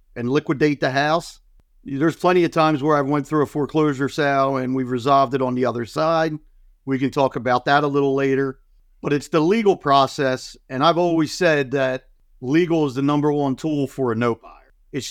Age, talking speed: 50-69, 205 wpm